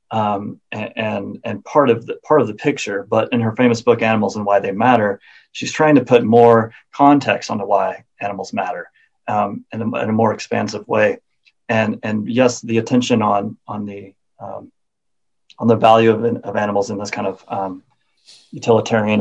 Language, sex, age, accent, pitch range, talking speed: English, male, 30-49, American, 105-125 Hz, 185 wpm